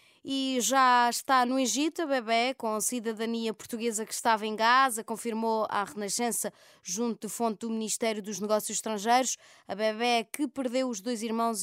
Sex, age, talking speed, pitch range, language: female, 20-39, 170 wpm, 210-250 Hz, Portuguese